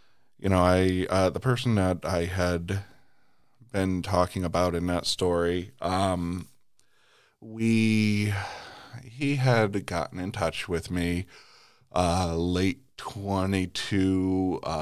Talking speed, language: 110 wpm, English